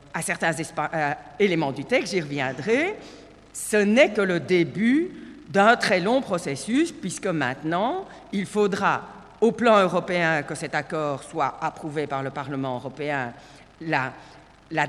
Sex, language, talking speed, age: female, French, 135 wpm, 50-69